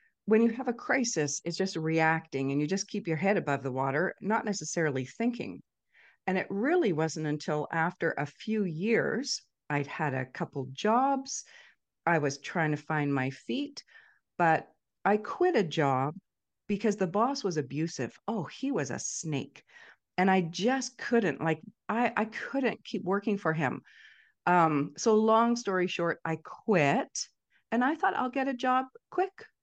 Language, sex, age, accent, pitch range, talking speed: English, female, 40-59, American, 155-225 Hz, 170 wpm